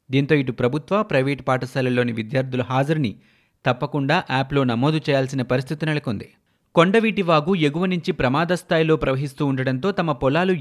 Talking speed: 125 wpm